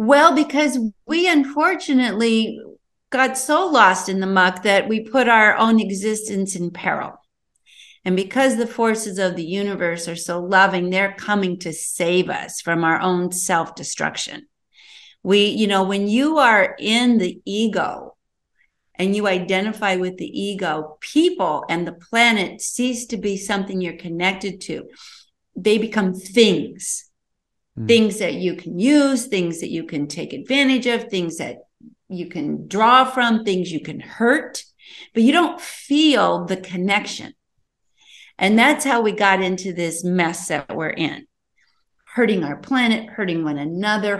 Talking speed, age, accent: 150 wpm, 50-69, American